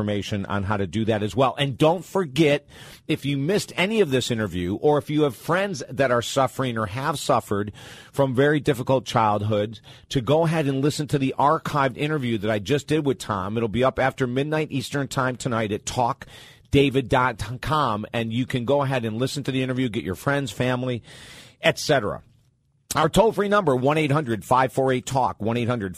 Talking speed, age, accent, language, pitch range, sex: 180 wpm, 40-59, American, English, 120-145 Hz, male